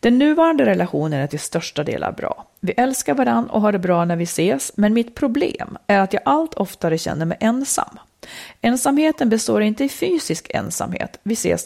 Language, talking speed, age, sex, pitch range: Swedish, 190 wpm, 40-59, female, 180-250 Hz